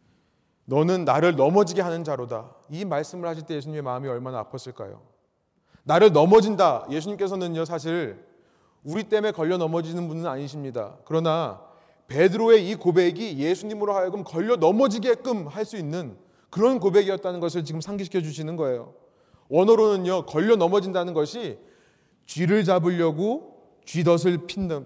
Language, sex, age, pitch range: Korean, male, 30-49, 165-225 Hz